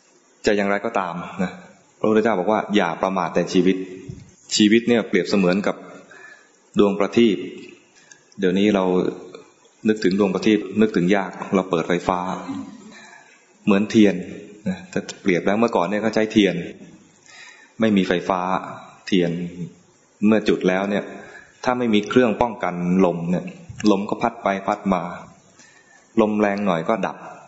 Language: English